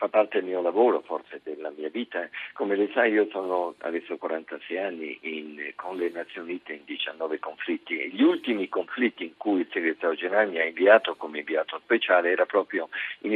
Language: Italian